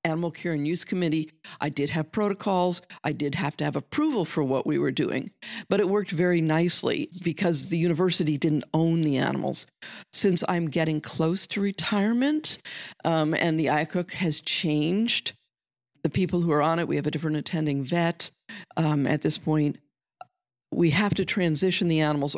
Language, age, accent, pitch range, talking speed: English, 50-69, American, 150-180 Hz, 175 wpm